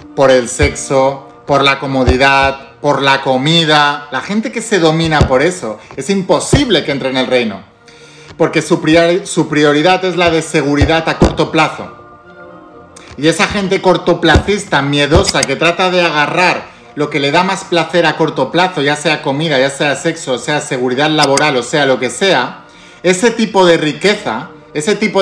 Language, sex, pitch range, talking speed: Spanish, male, 145-180 Hz, 175 wpm